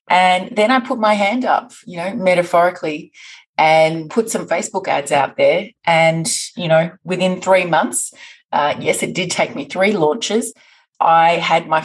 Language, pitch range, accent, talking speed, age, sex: English, 155-195 Hz, Australian, 170 wpm, 30-49, female